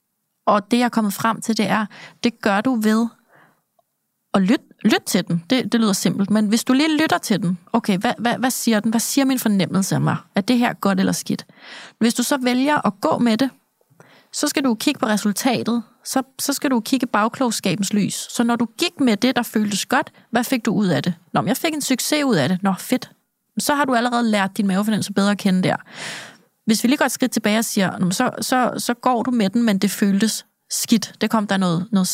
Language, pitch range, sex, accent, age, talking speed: Danish, 200-250 Hz, female, native, 30-49, 240 wpm